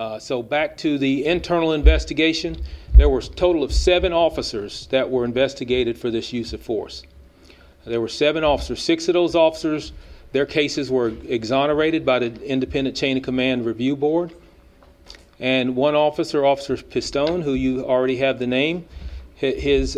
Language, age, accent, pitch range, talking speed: English, 40-59, American, 110-140 Hz, 160 wpm